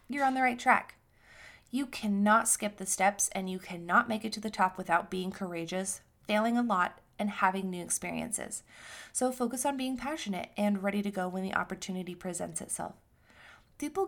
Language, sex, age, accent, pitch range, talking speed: English, female, 20-39, American, 195-240 Hz, 185 wpm